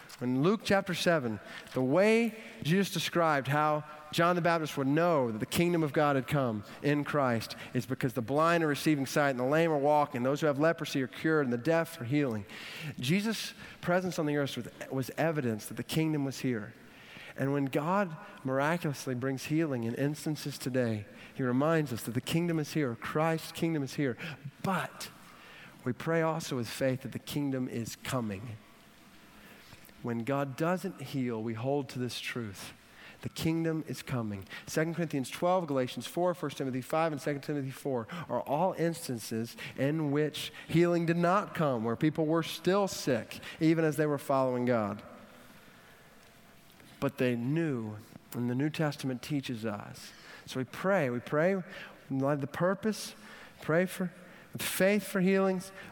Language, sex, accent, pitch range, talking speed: English, male, American, 125-165 Hz, 170 wpm